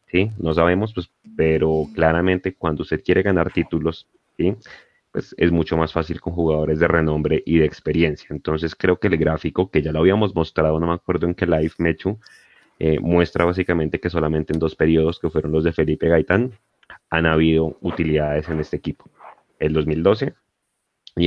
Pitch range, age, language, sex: 80-90 Hz, 30-49, Spanish, male